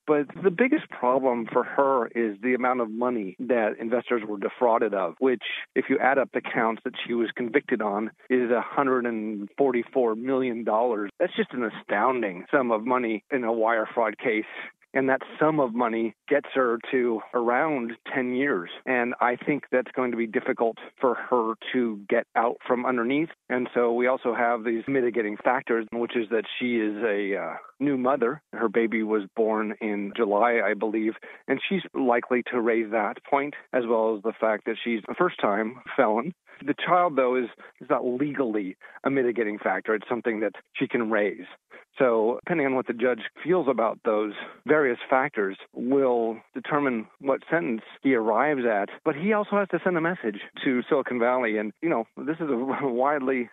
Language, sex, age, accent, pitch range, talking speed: English, male, 40-59, American, 115-135 Hz, 185 wpm